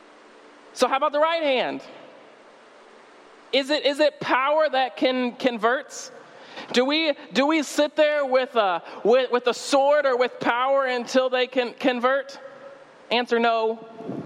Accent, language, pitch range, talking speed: American, English, 215-280 Hz, 145 wpm